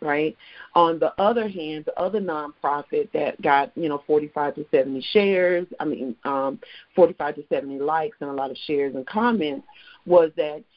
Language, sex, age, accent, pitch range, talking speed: English, female, 40-59, American, 150-175 Hz, 180 wpm